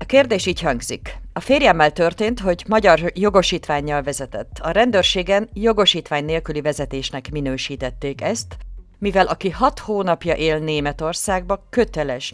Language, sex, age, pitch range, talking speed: Hungarian, female, 50-69, 150-195 Hz, 120 wpm